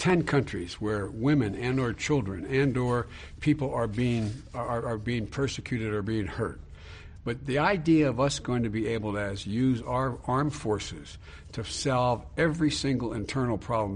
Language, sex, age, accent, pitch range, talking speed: English, male, 60-79, American, 105-140 Hz, 170 wpm